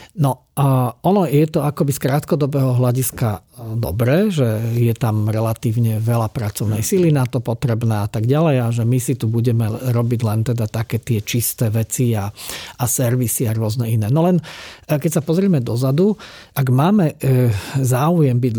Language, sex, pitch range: Slovak, male, 120-150 Hz